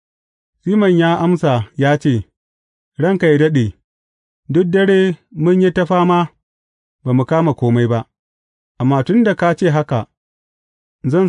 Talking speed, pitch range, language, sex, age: 90 wpm, 105-165 Hz, English, male, 30-49